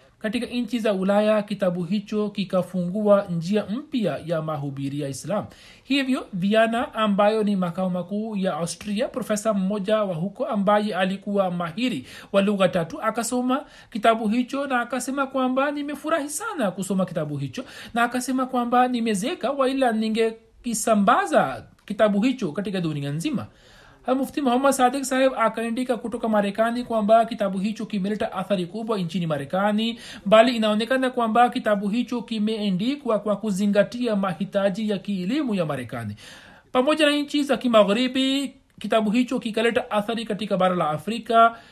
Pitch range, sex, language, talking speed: 200-250 Hz, male, Swahili, 150 wpm